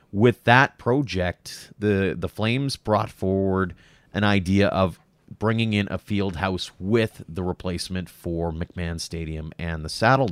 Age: 30-49